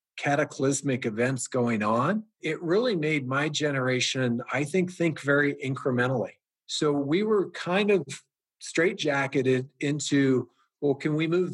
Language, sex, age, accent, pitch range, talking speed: English, male, 40-59, American, 130-160 Hz, 130 wpm